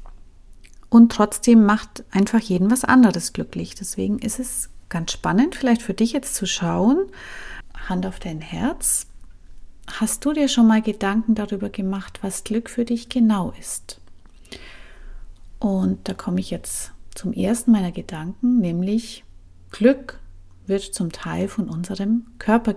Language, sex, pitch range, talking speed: German, female, 175-225 Hz, 140 wpm